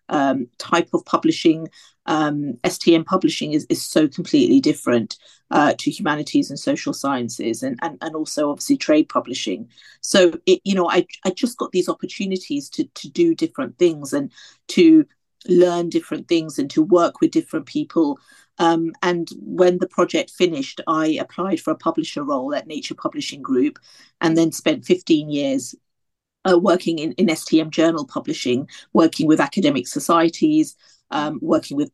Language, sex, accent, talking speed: English, female, British, 160 wpm